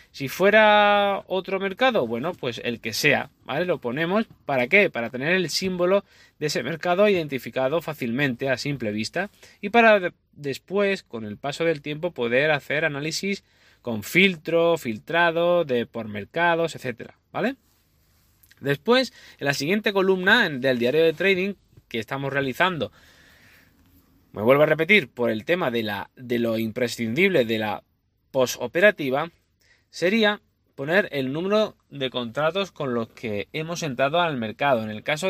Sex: male